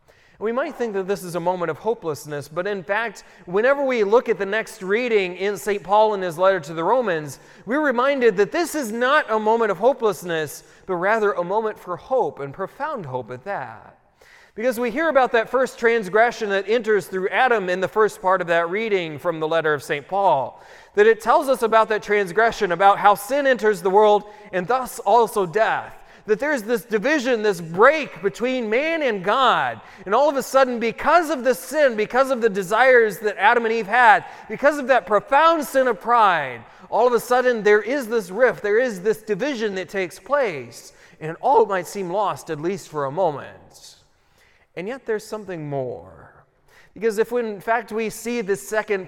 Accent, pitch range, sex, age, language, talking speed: American, 190-255 Hz, male, 30-49, English, 205 wpm